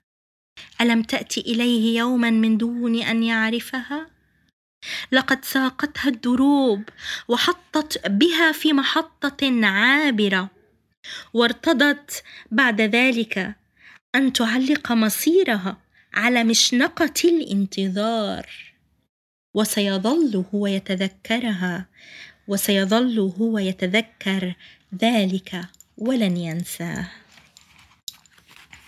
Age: 20-39